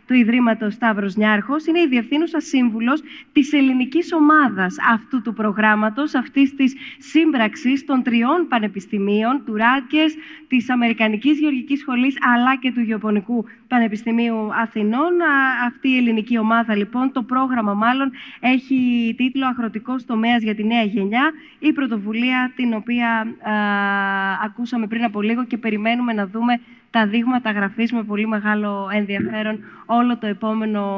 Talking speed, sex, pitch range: 135 wpm, female, 215-270 Hz